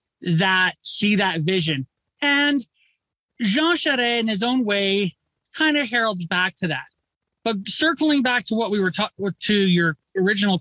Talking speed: 160 wpm